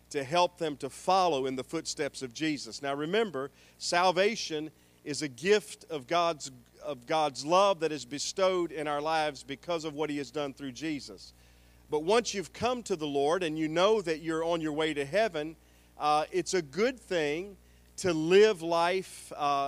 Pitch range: 140-180 Hz